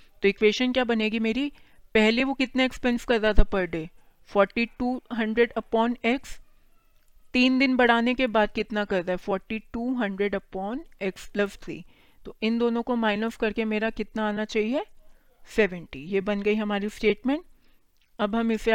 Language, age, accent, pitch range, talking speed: Hindi, 40-59, native, 195-230 Hz, 165 wpm